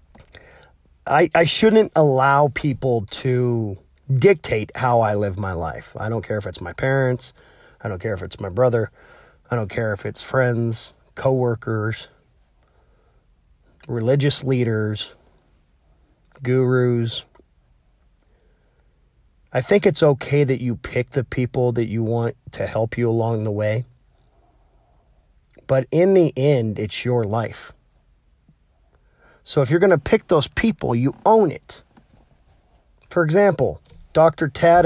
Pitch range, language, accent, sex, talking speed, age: 115-150 Hz, English, American, male, 130 wpm, 30-49